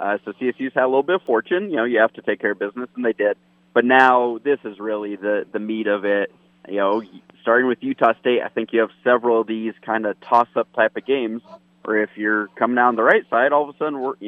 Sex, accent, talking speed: male, American, 270 wpm